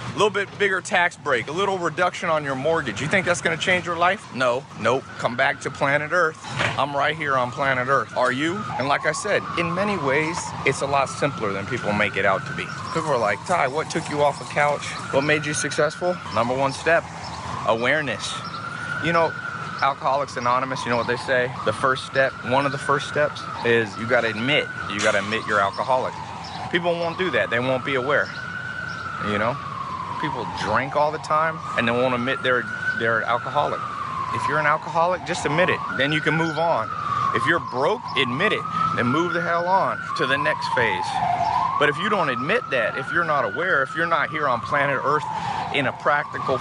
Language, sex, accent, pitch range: English, male, American, 135-185 Hz